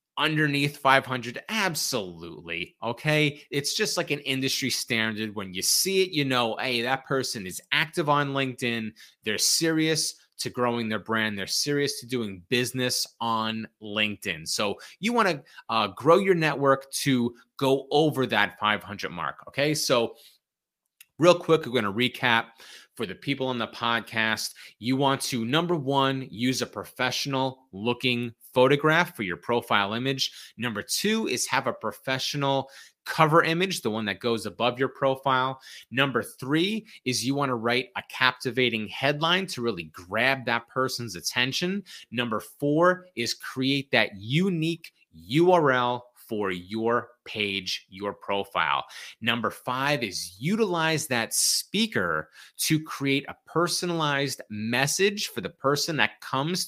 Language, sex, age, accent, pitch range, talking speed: English, male, 30-49, American, 115-155 Hz, 145 wpm